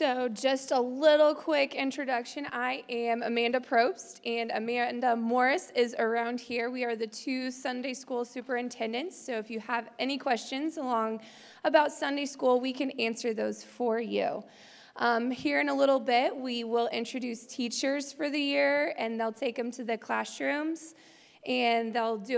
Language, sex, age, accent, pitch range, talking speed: English, female, 20-39, American, 225-260 Hz, 165 wpm